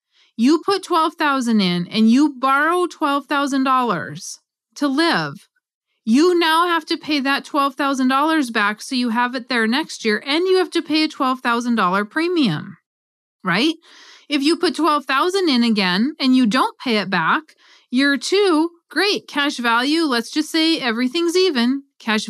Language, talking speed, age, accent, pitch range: English, 155 wpm, 30-49, American, 250-330 Hz